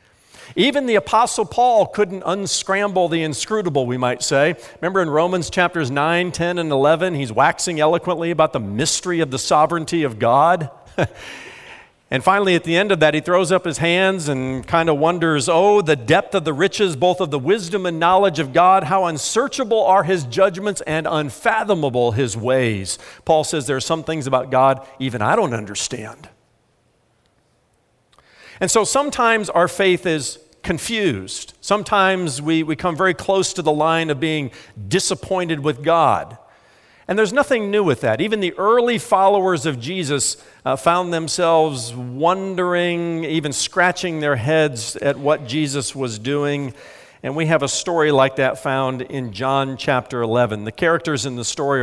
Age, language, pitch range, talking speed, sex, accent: 50-69, English, 135-185 Hz, 165 wpm, male, American